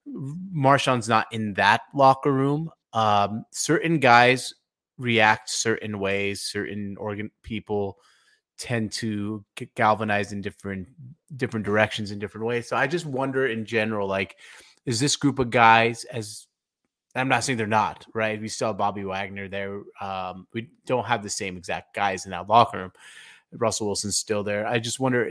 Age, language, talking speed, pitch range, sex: 30-49, English, 165 wpm, 100-120 Hz, male